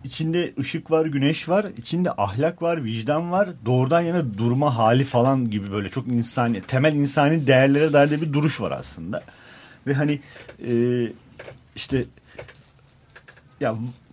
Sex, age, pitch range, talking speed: male, 40-59, 115-155 Hz, 140 wpm